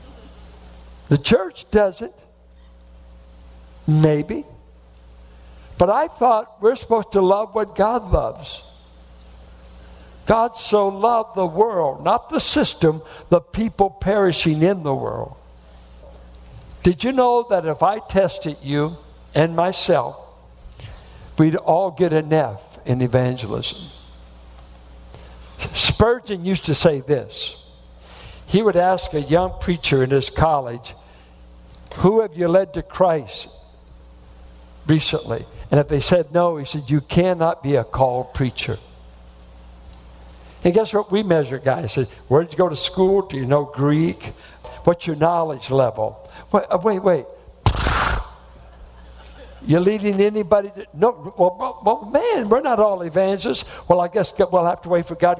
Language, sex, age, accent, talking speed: English, male, 60-79, American, 135 wpm